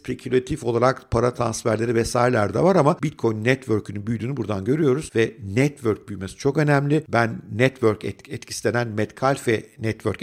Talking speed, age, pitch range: 135 wpm, 50-69, 110-145 Hz